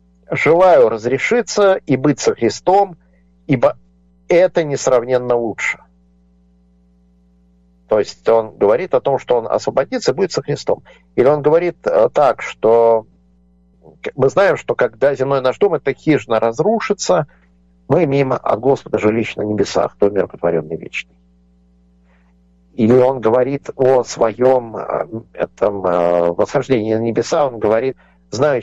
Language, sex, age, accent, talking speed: Russian, male, 50-69, native, 125 wpm